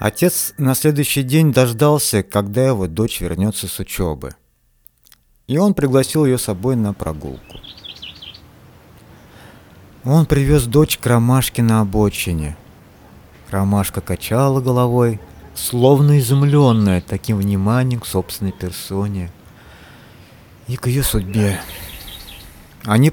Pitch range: 90-125 Hz